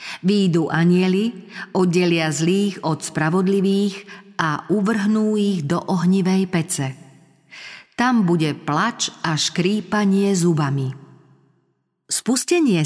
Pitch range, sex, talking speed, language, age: 150-195 Hz, female, 90 wpm, Slovak, 40-59